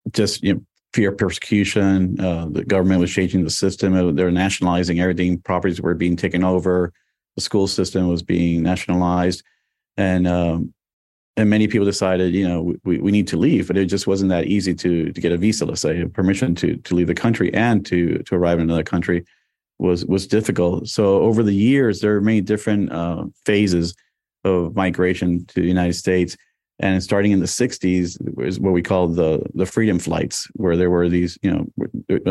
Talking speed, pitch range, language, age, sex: 195 wpm, 90-100 Hz, English, 40-59, male